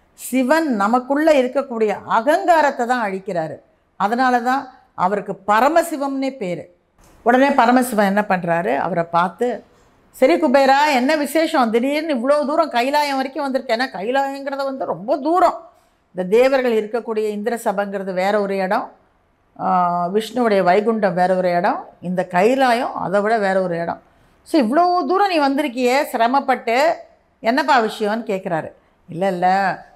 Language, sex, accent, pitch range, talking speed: Tamil, female, native, 180-255 Hz, 125 wpm